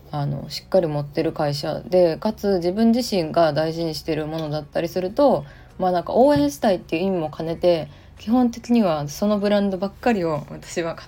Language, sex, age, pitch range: Japanese, female, 20-39, 150-205 Hz